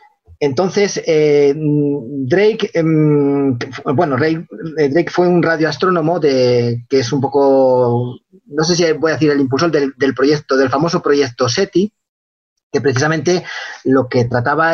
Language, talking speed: Spanish, 145 wpm